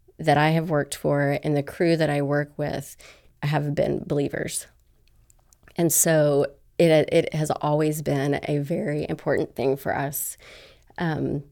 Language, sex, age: English, female, 30-49